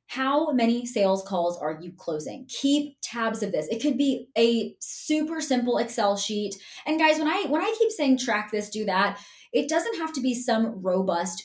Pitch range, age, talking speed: 195-270 Hz, 20-39, 200 wpm